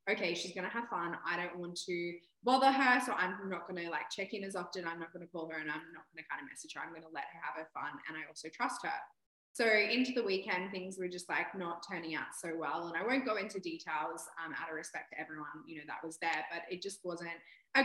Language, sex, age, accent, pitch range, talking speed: English, female, 20-39, Australian, 165-195 Hz, 285 wpm